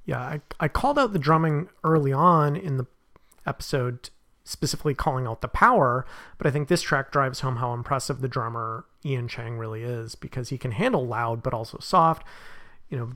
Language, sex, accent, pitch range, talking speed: English, male, American, 120-145 Hz, 190 wpm